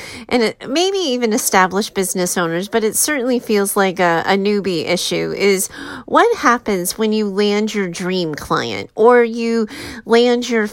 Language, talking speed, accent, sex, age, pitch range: English, 160 wpm, American, female, 30-49, 190-240 Hz